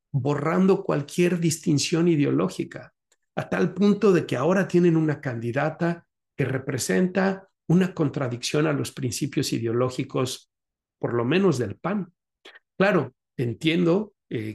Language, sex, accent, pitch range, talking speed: Spanish, male, Mexican, 120-160 Hz, 120 wpm